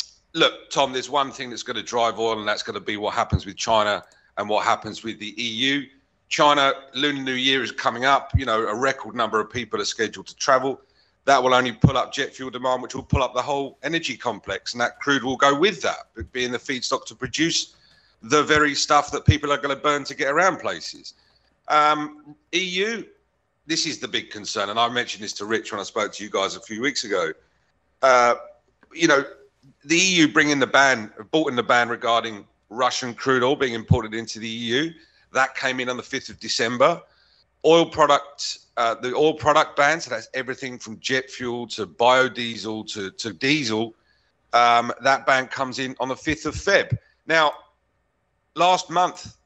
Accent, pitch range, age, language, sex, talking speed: British, 120-150 Hz, 40-59, English, male, 205 wpm